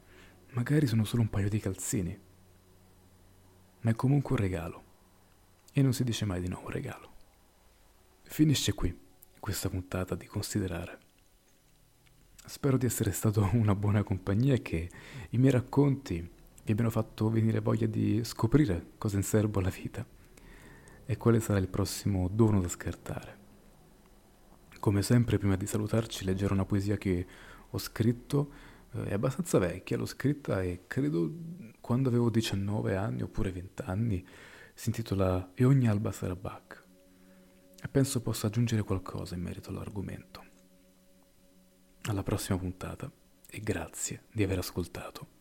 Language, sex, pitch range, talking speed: Italian, male, 95-115 Hz, 145 wpm